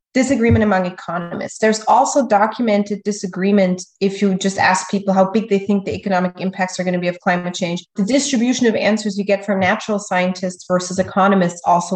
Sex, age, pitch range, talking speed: female, 30-49, 185-225 Hz, 190 wpm